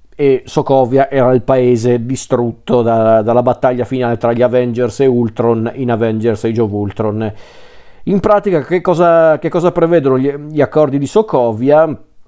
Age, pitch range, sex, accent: 40-59, 125-155 Hz, male, native